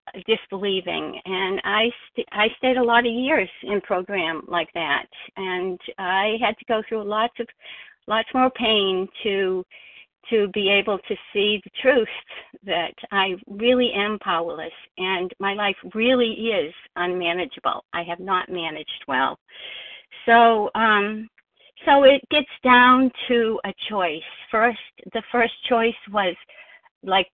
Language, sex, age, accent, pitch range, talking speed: English, female, 60-79, American, 200-250 Hz, 140 wpm